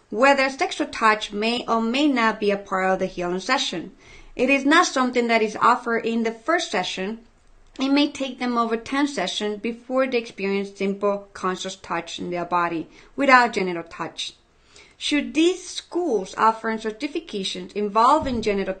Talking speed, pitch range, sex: 165 wpm, 205-270 Hz, female